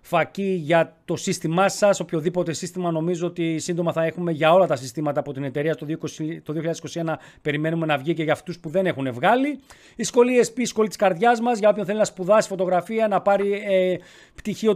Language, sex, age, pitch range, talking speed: Greek, male, 40-59, 160-210 Hz, 200 wpm